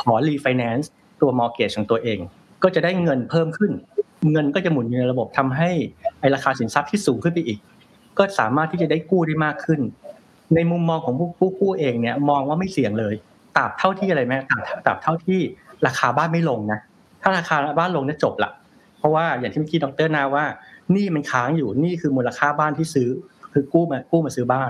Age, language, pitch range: 60-79, Thai, 130-175 Hz